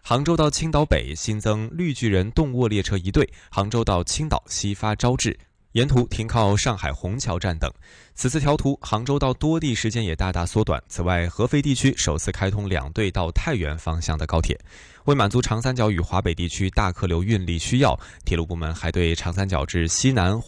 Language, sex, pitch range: Chinese, male, 85-125 Hz